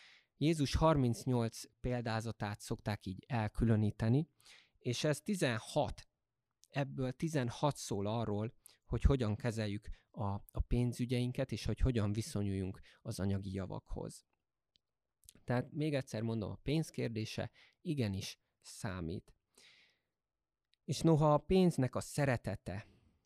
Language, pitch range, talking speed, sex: Hungarian, 105-125 Hz, 105 wpm, male